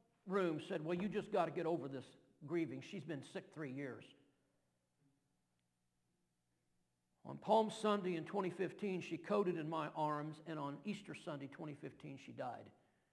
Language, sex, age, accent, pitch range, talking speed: English, male, 50-69, American, 135-175 Hz, 150 wpm